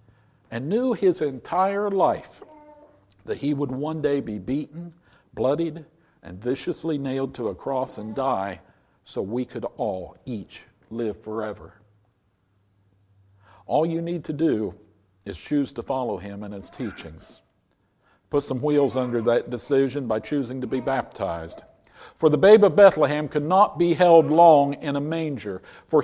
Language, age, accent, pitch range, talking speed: English, 50-69, American, 110-150 Hz, 150 wpm